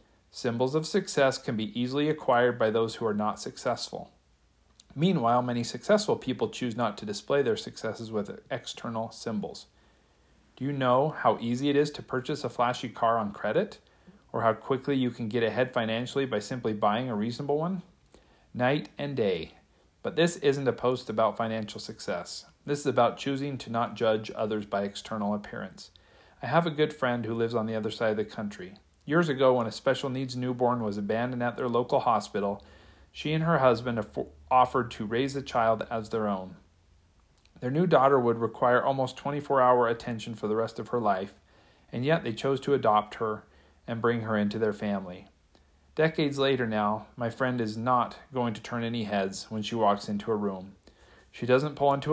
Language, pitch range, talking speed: English, 105-130 Hz, 190 wpm